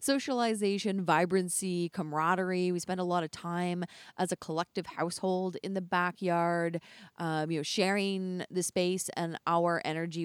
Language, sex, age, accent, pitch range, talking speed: English, female, 20-39, American, 165-215 Hz, 140 wpm